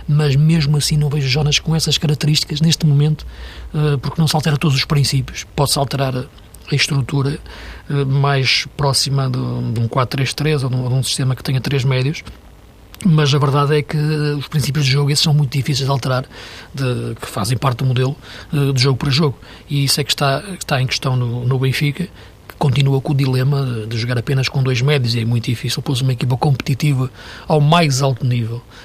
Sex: male